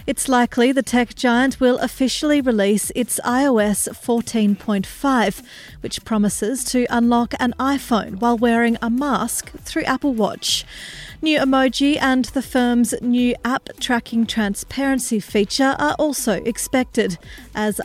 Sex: female